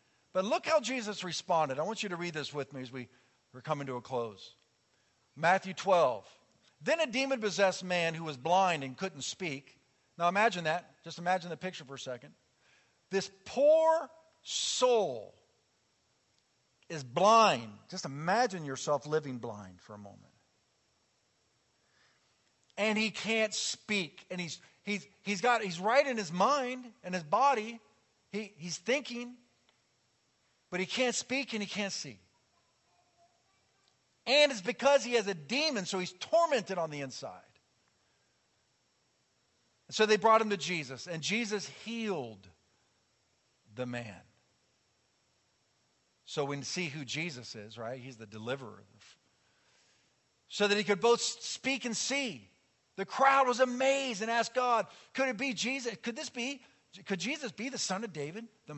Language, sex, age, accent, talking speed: English, male, 50-69, American, 150 wpm